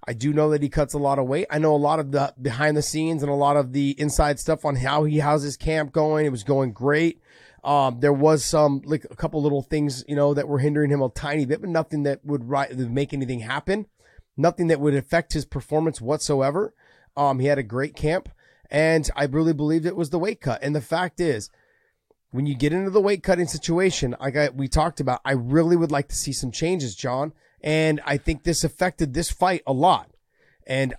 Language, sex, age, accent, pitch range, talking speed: English, male, 30-49, American, 140-165 Hz, 235 wpm